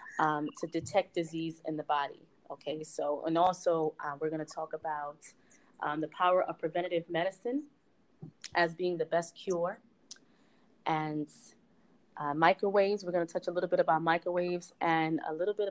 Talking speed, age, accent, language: 170 wpm, 20-39, American, English